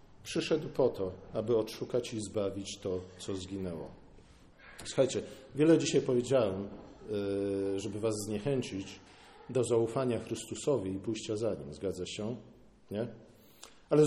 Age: 50-69